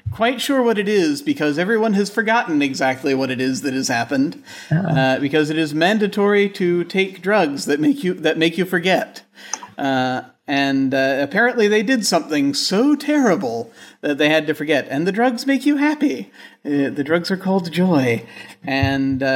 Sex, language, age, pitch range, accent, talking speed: male, English, 40-59, 135-175 Hz, American, 180 wpm